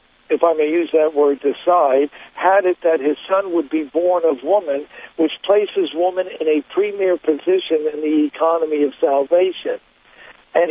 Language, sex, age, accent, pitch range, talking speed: English, male, 60-79, American, 155-205 Hz, 170 wpm